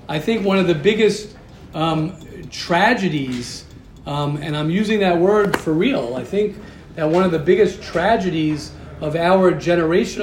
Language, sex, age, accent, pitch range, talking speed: English, male, 40-59, American, 155-205 Hz, 160 wpm